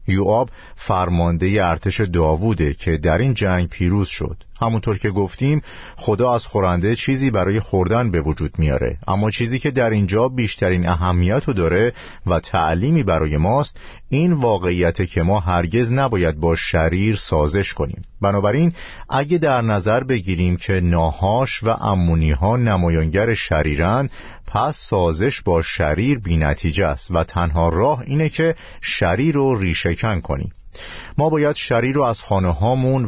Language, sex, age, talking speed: Persian, male, 50-69, 145 wpm